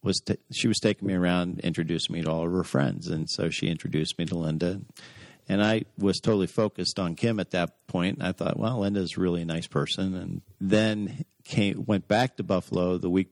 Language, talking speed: English, 220 wpm